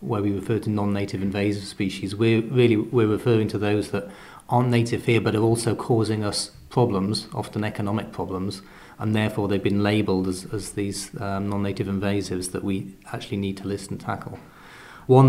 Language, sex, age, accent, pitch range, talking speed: English, male, 30-49, British, 100-120 Hz, 175 wpm